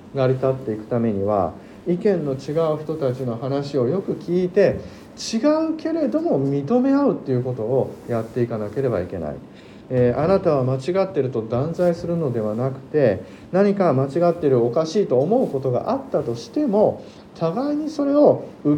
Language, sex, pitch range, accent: Japanese, male, 125-195 Hz, native